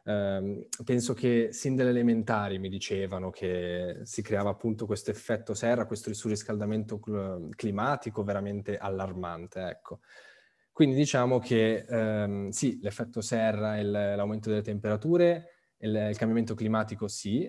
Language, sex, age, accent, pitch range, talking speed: Italian, male, 20-39, native, 100-125 Hz, 130 wpm